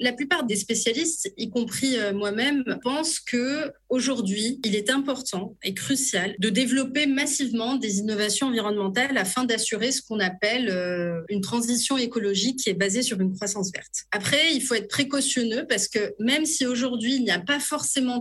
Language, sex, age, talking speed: French, female, 30-49, 165 wpm